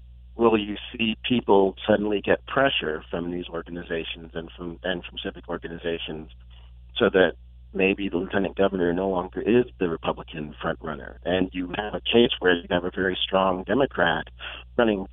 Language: English